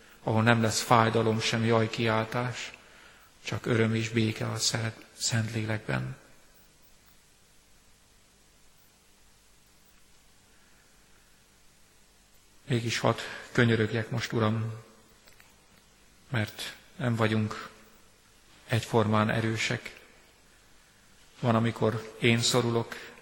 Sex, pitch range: male, 110-115 Hz